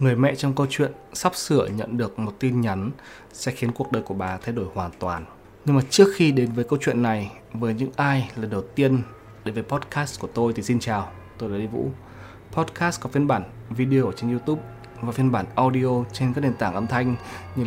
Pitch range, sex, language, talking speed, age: 105-135 Hz, male, Vietnamese, 230 wpm, 20-39